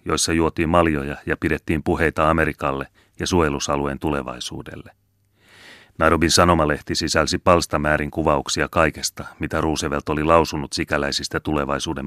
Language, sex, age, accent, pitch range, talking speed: Finnish, male, 30-49, native, 75-95 Hz, 110 wpm